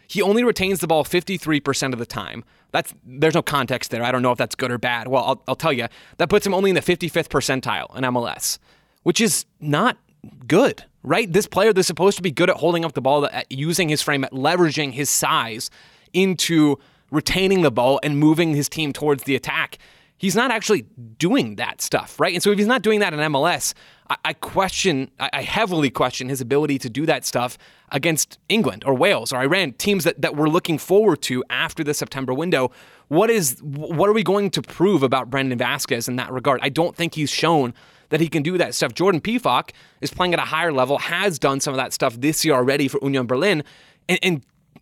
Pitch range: 135-175 Hz